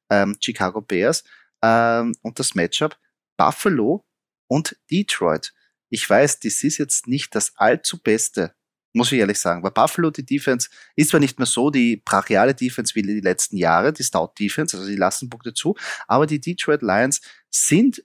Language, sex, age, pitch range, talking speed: German, male, 30-49, 110-135 Hz, 165 wpm